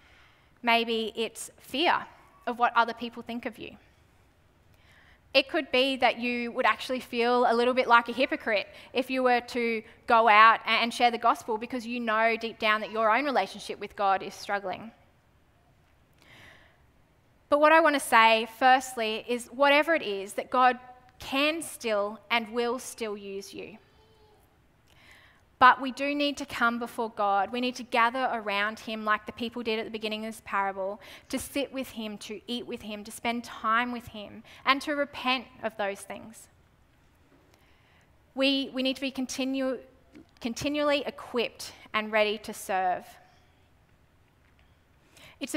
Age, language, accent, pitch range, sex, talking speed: 20-39, English, Australian, 215-255 Hz, female, 160 wpm